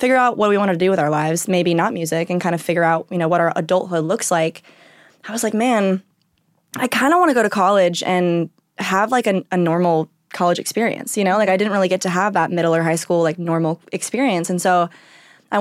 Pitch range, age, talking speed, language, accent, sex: 170-220 Hz, 20-39, 250 wpm, English, American, female